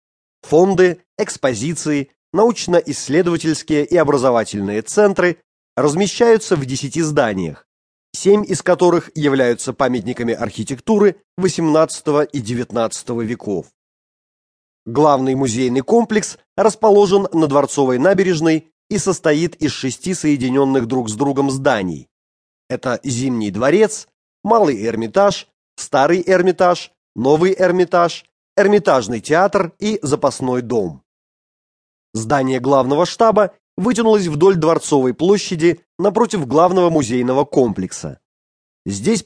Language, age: English, 30-49